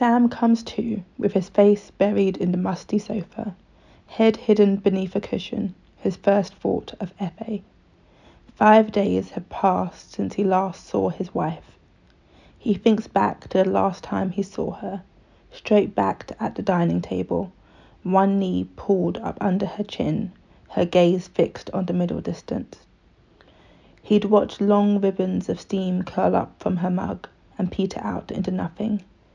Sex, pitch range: female, 175-205 Hz